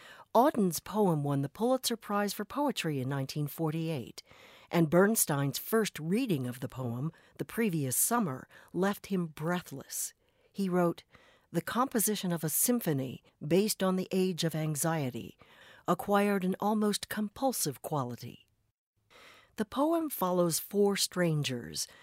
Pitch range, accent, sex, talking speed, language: 155-210 Hz, American, female, 125 wpm, English